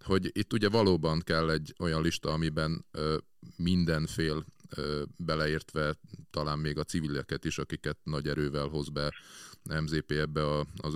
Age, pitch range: 30-49, 80-95 Hz